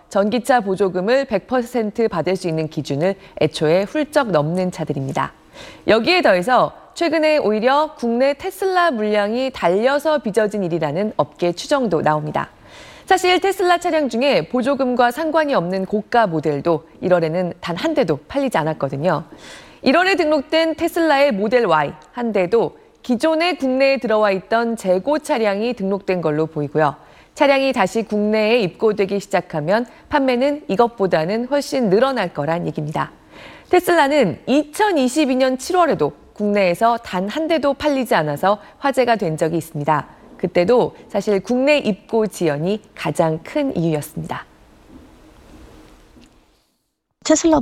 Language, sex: Korean, female